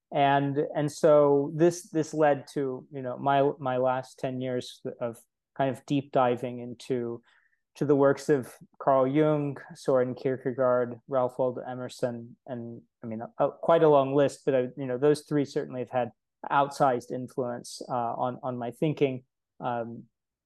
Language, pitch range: English, 125-150 Hz